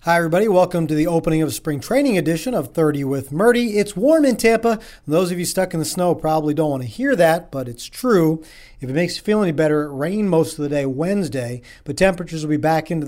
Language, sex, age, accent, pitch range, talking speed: English, male, 40-59, American, 150-205 Hz, 250 wpm